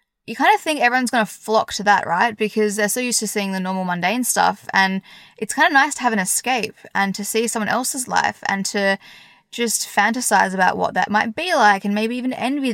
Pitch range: 195-245 Hz